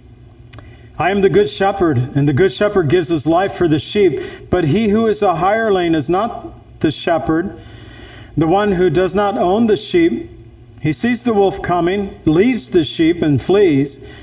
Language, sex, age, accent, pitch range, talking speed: English, male, 50-69, American, 120-190 Hz, 180 wpm